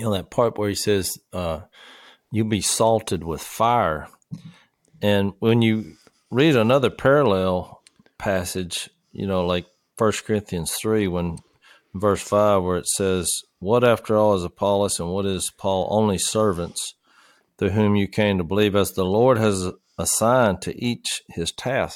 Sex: male